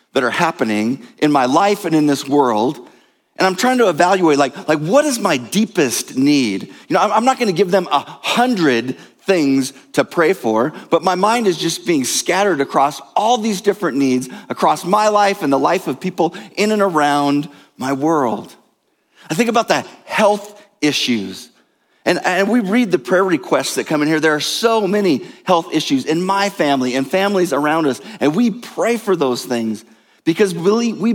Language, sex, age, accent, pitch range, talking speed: English, male, 40-59, American, 145-210 Hz, 190 wpm